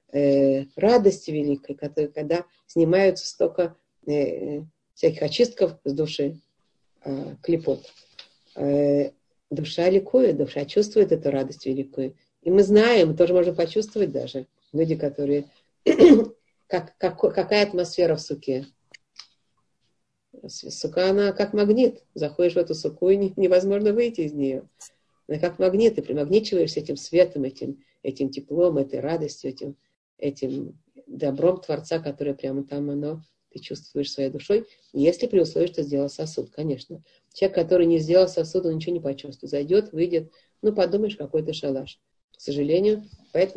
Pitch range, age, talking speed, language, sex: 145-190 Hz, 40-59, 140 wpm, Russian, female